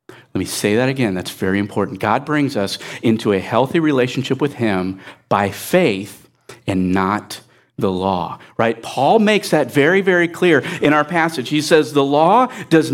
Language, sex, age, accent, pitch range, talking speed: English, male, 50-69, American, 120-175 Hz, 175 wpm